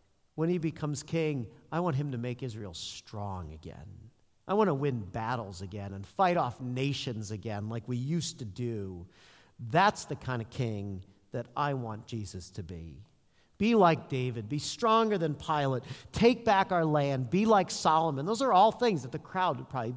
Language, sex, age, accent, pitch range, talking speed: English, male, 50-69, American, 110-170 Hz, 185 wpm